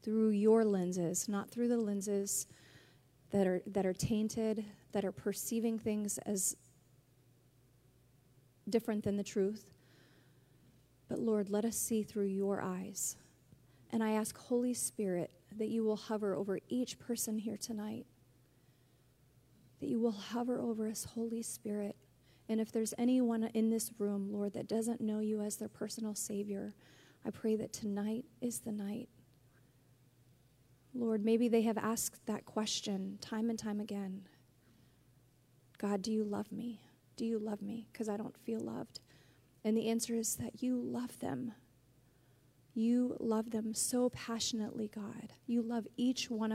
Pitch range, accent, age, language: 175-225 Hz, American, 30-49, English